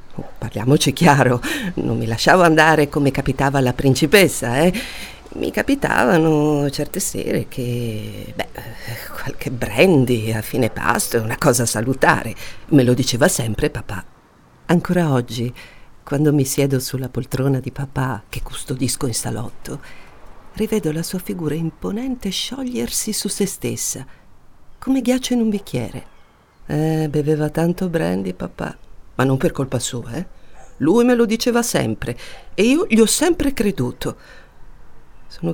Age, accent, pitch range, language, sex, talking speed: 50-69, native, 125-200 Hz, Italian, female, 135 wpm